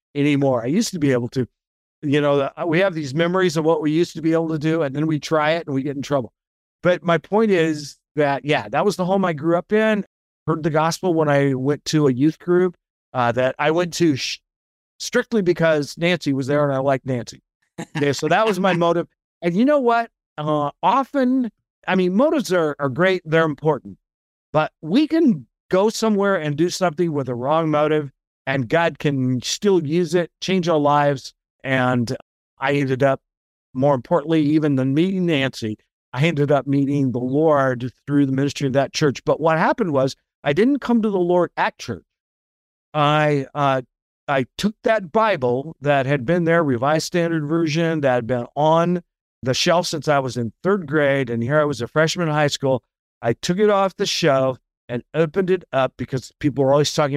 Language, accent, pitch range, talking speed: English, American, 135-175 Hz, 205 wpm